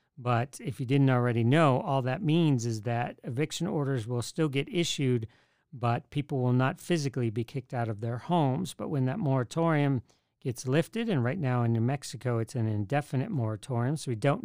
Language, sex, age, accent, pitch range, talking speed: English, male, 40-59, American, 120-150 Hz, 195 wpm